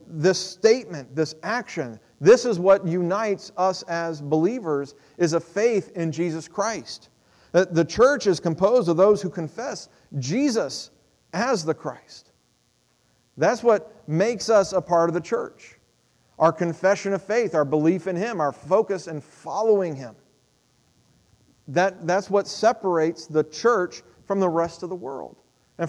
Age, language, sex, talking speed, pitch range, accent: 40-59, English, male, 150 wpm, 125-175 Hz, American